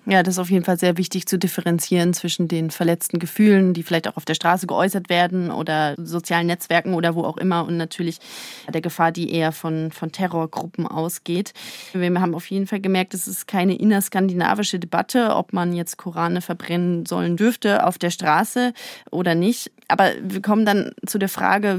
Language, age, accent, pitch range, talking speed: German, 30-49, German, 175-210 Hz, 190 wpm